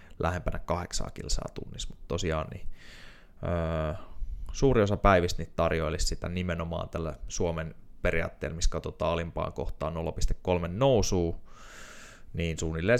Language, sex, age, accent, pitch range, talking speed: Finnish, male, 20-39, native, 85-105 Hz, 120 wpm